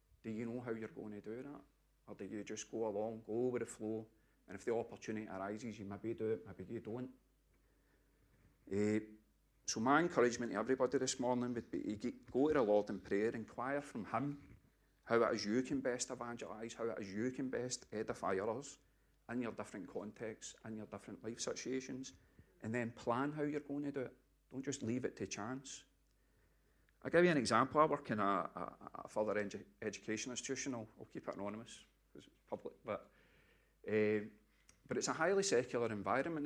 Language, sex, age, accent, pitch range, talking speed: English, male, 40-59, British, 105-130 Hz, 195 wpm